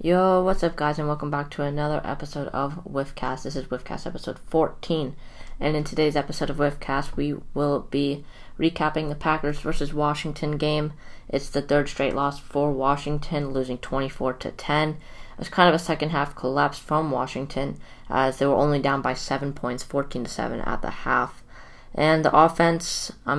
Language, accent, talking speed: English, American, 175 wpm